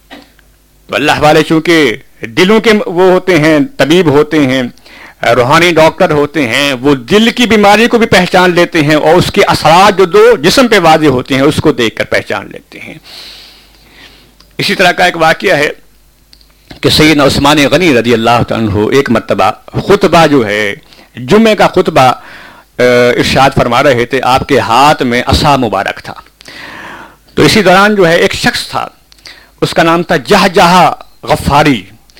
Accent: Indian